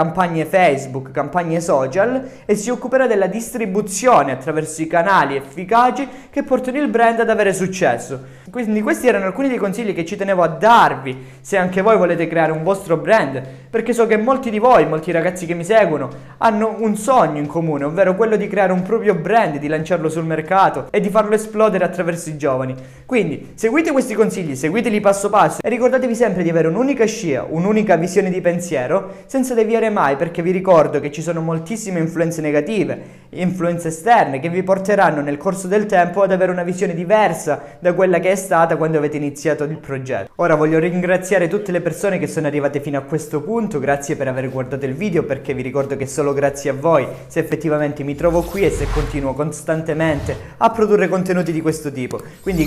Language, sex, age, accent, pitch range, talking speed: Italian, male, 20-39, native, 155-215 Hz, 195 wpm